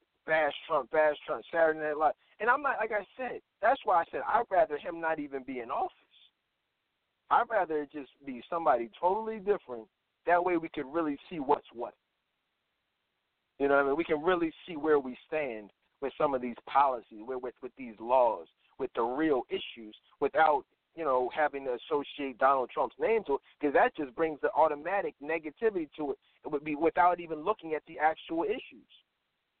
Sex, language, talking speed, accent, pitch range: male, English, 195 wpm, American, 140-205 Hz